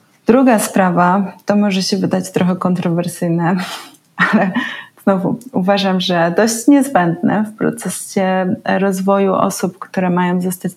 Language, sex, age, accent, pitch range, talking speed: Polish, female, 30-49, native, 185-225 Hz, 115 wpm